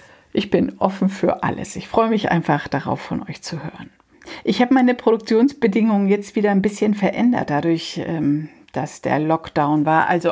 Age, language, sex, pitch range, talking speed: 60-79, German, female, 170-215 Hz, 170 wpm